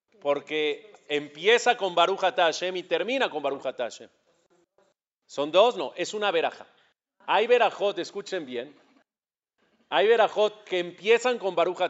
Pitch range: 150-205 Hz